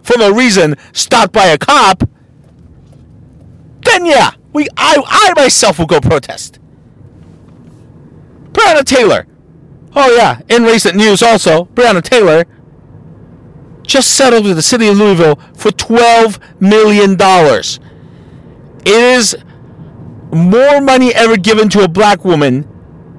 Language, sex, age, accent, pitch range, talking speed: English, male, 50-69, American, 160-240 Hz, 120 wpm